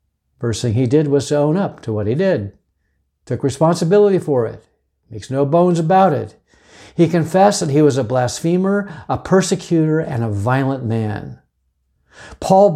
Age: 60-79